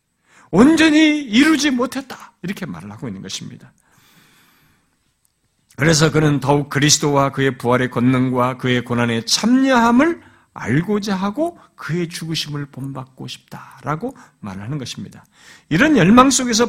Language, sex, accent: Korean, male, native